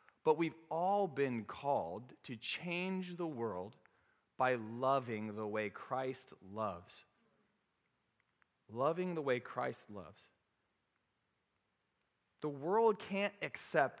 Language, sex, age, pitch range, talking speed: English, male, 30-49, 120-180 Hz, 105 wpm